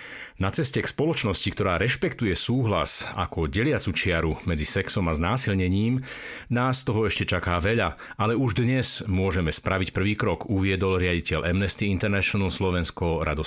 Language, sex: Slovak, male